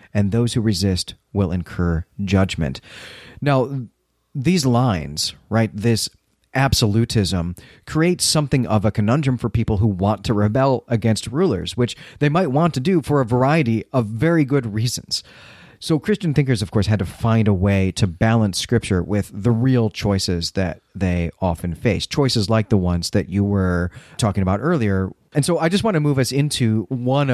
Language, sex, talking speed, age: English, male, 175 wpm, 30-49